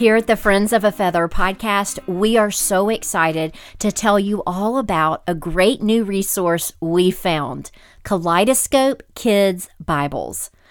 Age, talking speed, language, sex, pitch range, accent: 40-59, 145 wpm, English, female, 170-220 Hz, American